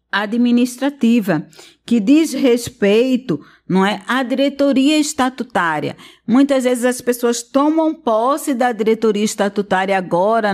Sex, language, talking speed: female, Portuguese, 95 wpm